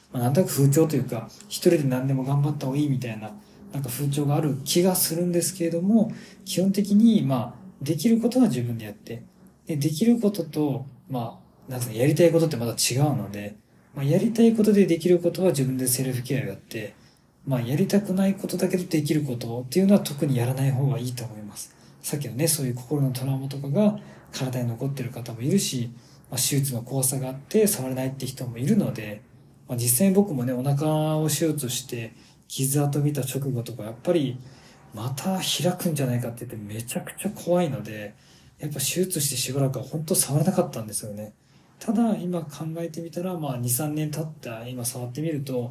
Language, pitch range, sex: Japanese, 125-175 Hz, male